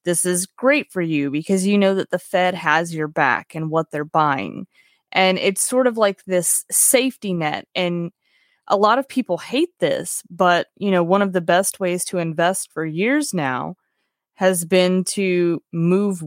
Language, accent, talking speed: English, American, 185 wpm